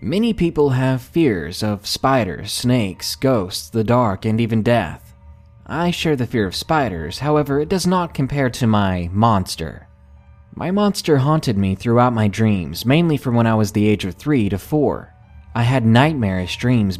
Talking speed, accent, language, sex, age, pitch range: 175 wpm, American, English, male, 20-39, 105-140 Hz